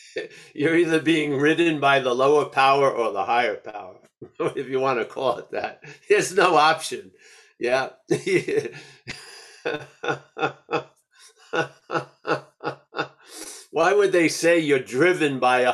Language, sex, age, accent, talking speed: English, male, 50-69, American, 120 wpm